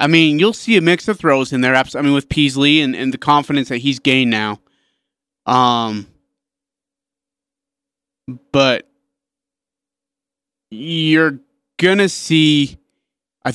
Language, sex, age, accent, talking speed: English, male, 30-49, American, 130 wpm